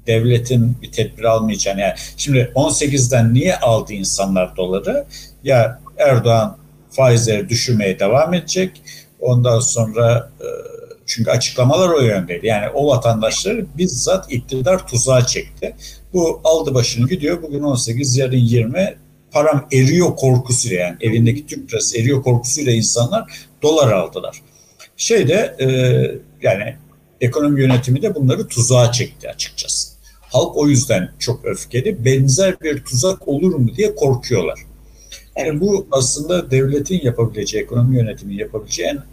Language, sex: Turkish, male